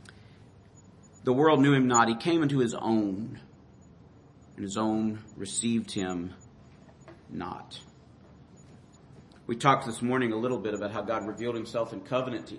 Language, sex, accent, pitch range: English, male, American, 115-165 Hz